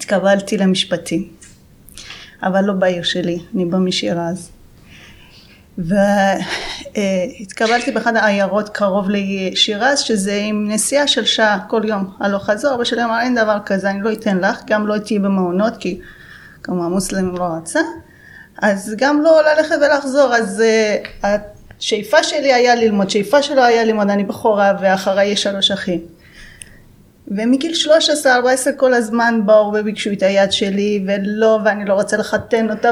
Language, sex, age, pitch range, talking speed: Hebrew, female, 30-49, 200-245 Hz, 140 wpm